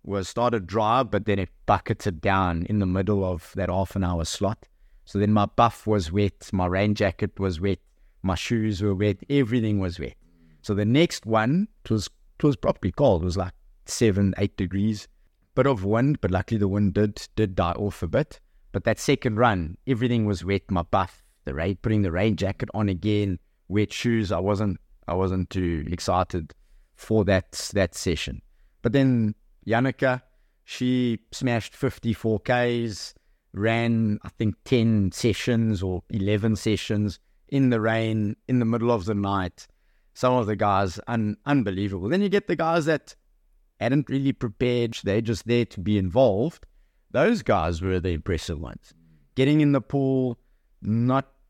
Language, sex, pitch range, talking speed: English, male, 95-120 Hz, 170 wpm